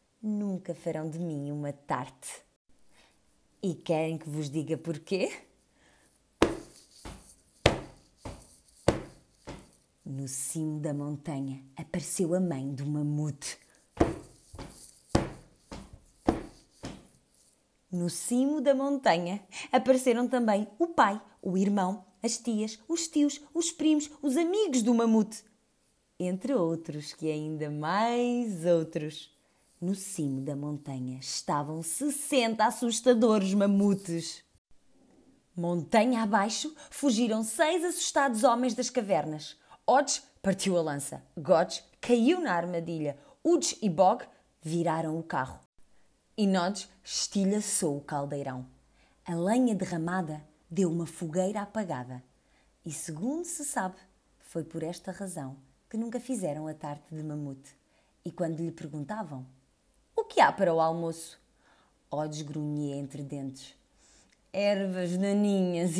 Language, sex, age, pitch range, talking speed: Portuguese, female, 20-39, 155-225 Hz, 110 wpm